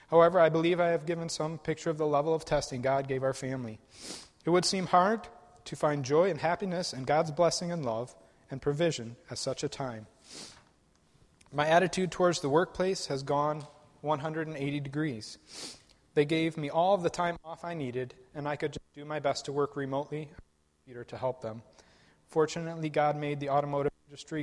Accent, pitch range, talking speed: American, 130-160 Hz, 185 wpm